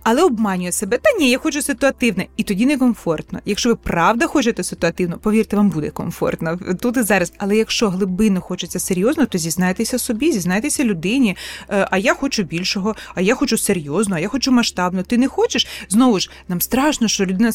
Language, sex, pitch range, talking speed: Ukrainian, female, 185-250 Hz, 185 wpm